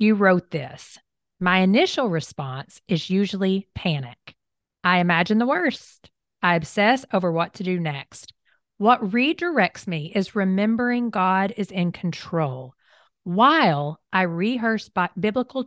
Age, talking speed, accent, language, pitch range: 40-59, 125 wpm, American, English, 170-225 Hz